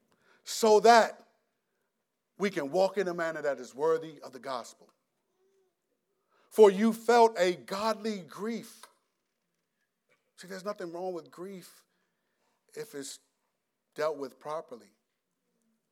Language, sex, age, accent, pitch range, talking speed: English, male, 50-69, American, 180-245 Hz, 115 wpm